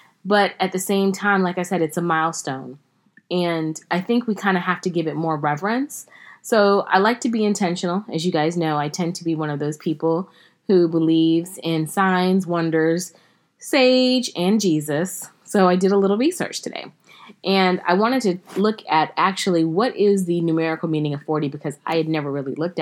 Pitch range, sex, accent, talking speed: 155-185 Hz, female, American, 200 wpm